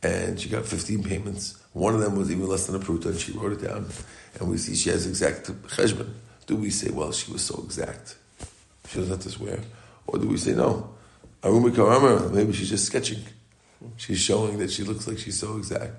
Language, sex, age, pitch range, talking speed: English, male, 50-69, 95-110 Hz, 215 wpm